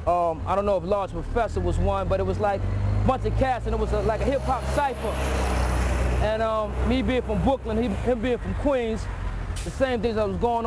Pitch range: 165-230 Hz